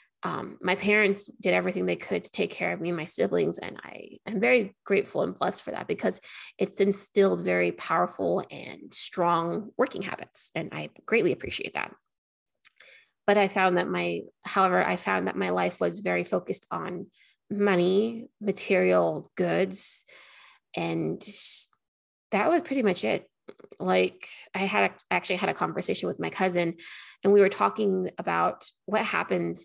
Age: 20-39